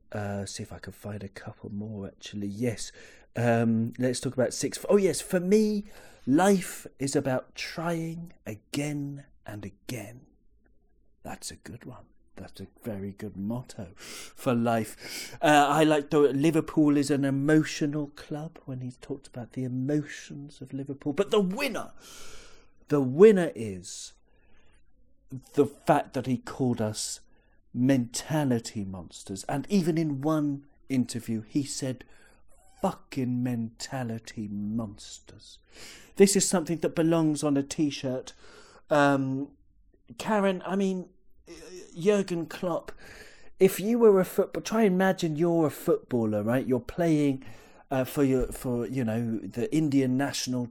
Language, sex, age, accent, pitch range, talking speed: English, male, 40-59, British, 115-160 Hz, 135 wpm